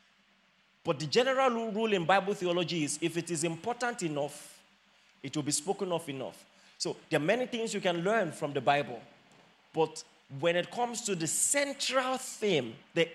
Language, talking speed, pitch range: English, 180 wpm, 160-240 Hz